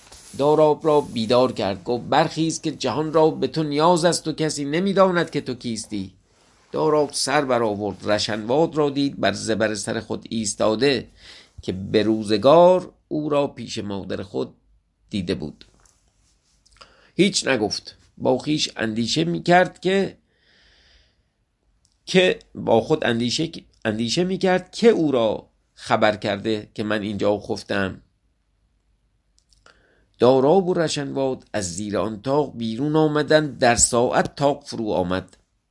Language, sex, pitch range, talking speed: English, male, 100-145 Hz, 125 wpm